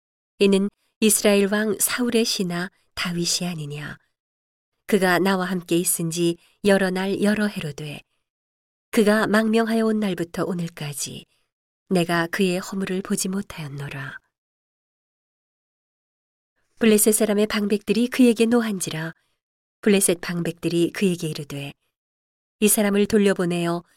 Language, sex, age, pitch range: Korean, female, 40-59, 165-215 Hz